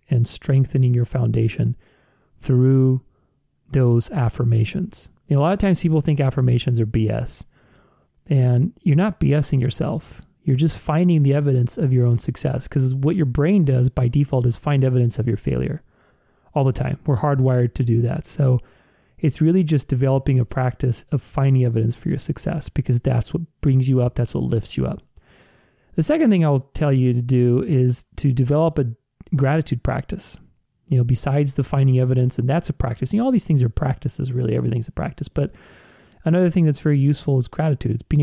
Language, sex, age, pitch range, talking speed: English, male, 30-49, 125-150 Hz, 190 wpm